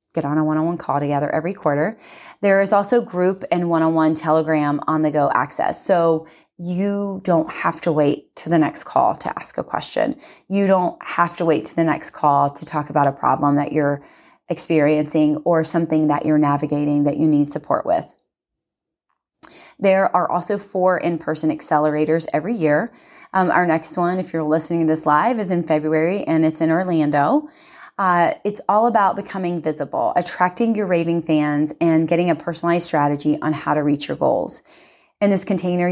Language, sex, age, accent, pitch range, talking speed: English, female, 20-39, American, 155-185 Hz, 180 wpm